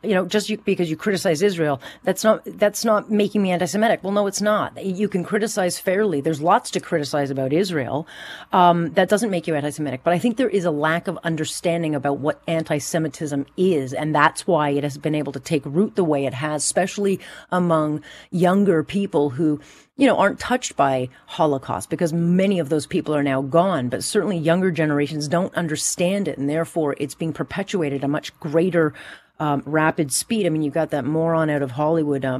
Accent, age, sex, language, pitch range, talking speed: American, 40-59, female, English, 150-195 Hz, 200 wpm